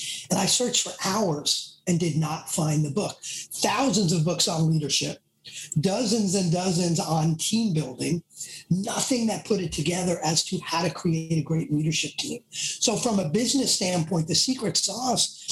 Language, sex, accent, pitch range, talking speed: English, male, American, 160-195 Hz, 170 wpm